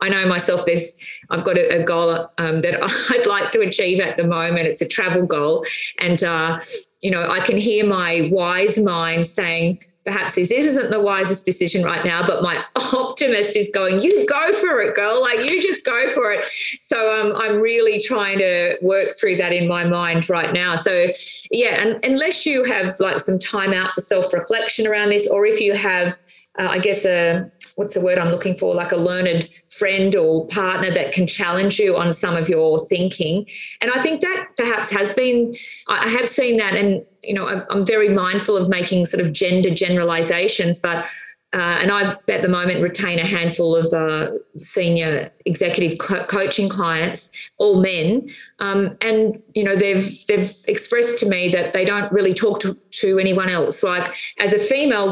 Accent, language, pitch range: Australian, English, 175-220 Hz